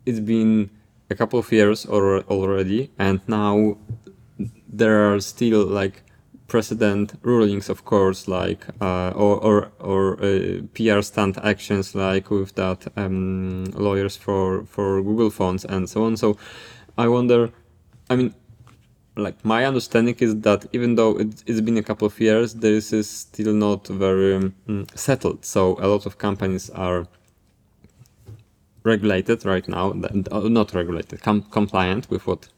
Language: English